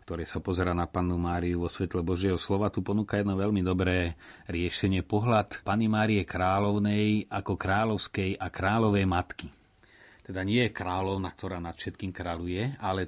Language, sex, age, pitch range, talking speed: Slovak, male, 30-49, 90-105 Hz, 155 wpm